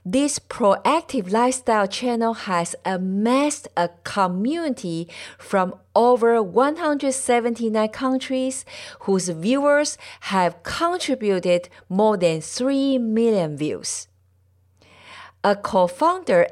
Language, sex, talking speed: English, female, 85 wpm